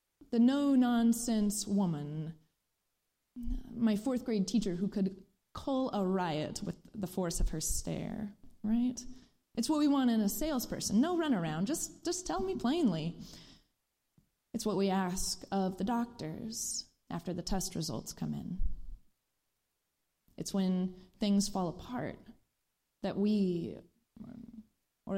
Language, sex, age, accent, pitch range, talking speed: English, female, 20-39, American, 185-235 Hz, 125 wpm